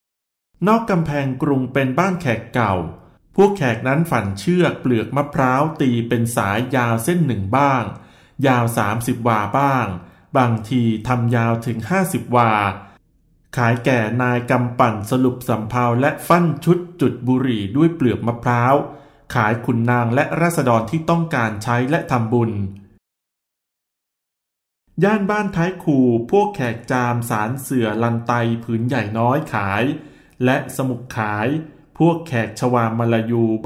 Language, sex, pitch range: Thai, male, 115-145 Hz